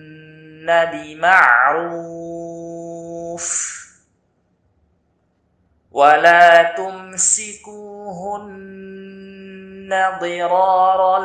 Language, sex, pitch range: Arabic, male, 165-190 Hz